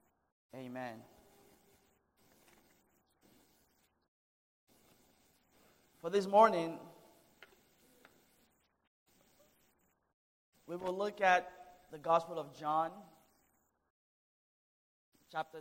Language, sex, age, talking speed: English, male, 20-39, 50 wpm